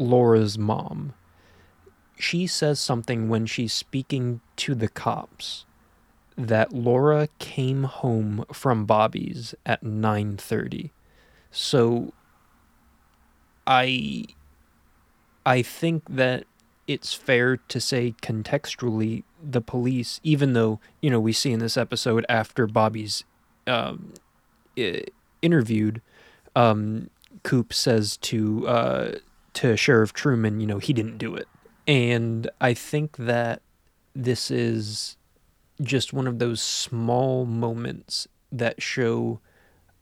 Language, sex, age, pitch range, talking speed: English, male, 20-39, 110-130 Hz, 110 wpm